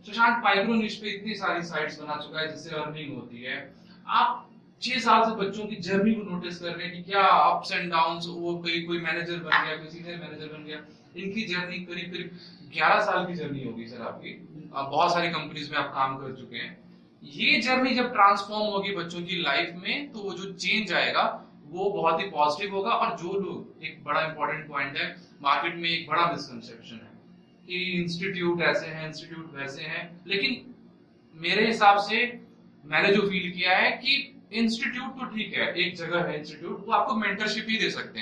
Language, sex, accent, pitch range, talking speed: Hindi, male, native, 165-215 Hz, 170 wpm